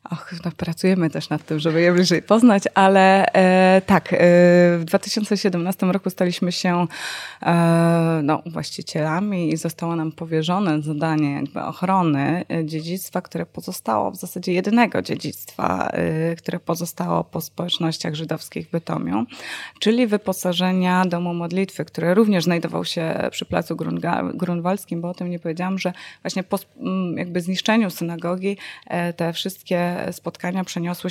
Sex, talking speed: female, 140 wpm